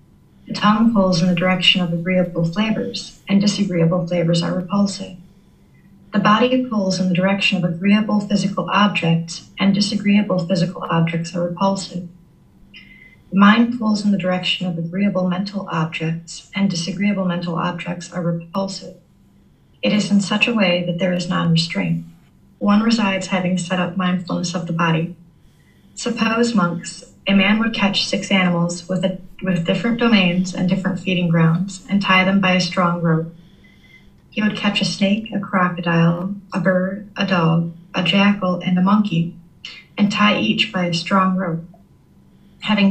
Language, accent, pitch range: English, American, 175-200 Hz